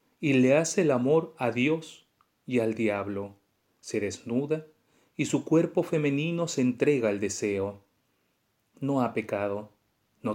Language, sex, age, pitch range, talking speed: Spanish, male, 40-59, 110-145 Hz, 140 wpm